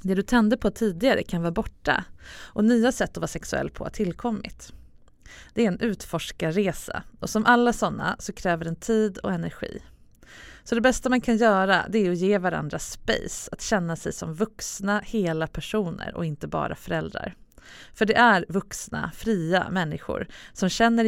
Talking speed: 180 wpm